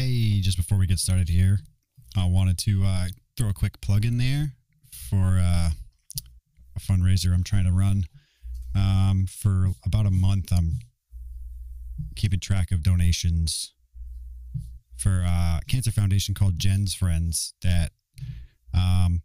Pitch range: 85-105 Hz